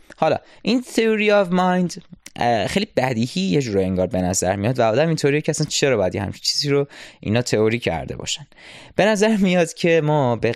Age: 20-39